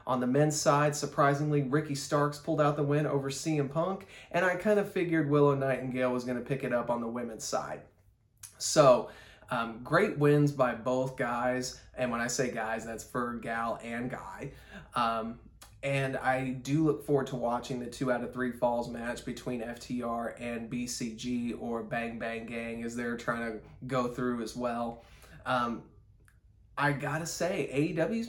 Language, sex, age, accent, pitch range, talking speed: English, male, 30-49, American, 120-140 Hz, 175 wpm